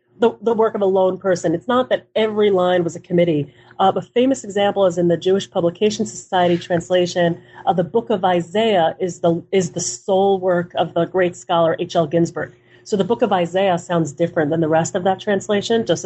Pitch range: 170-205 Hz